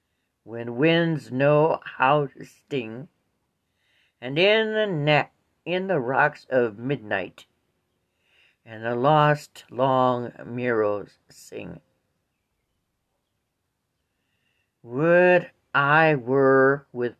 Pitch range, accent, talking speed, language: 120-150 Hz, American, 90 wpm, English